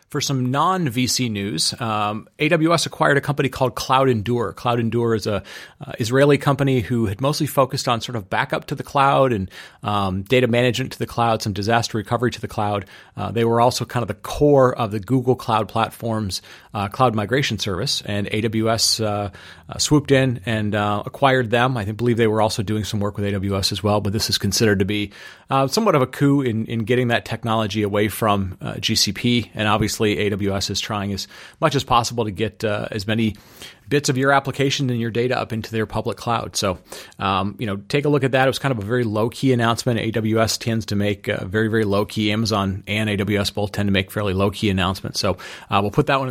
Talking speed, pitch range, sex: 225 wpm, 105-135 Hz, male